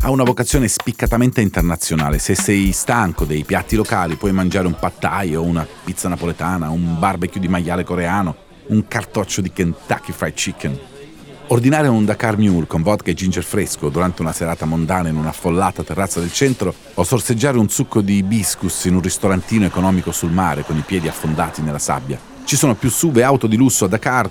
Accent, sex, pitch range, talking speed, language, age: native, male, 85-110 Hz, 190 wpm, Italian, 40-59